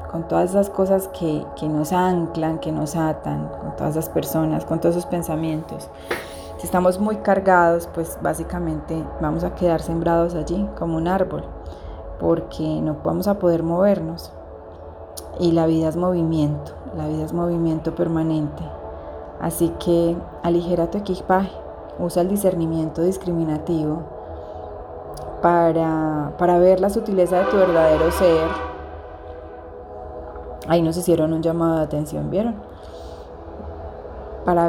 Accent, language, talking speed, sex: Colombian, Spanish, 130 wpm, female